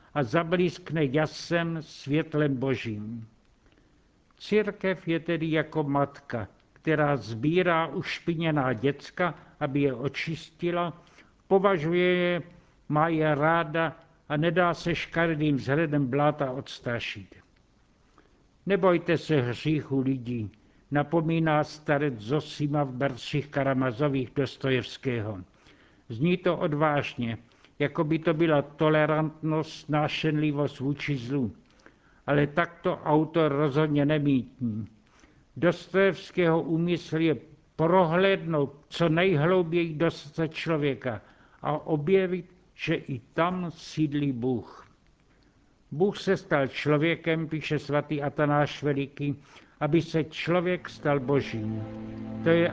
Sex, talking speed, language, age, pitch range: male, 95 wpm, Czech, 60-79, 140-170 Hz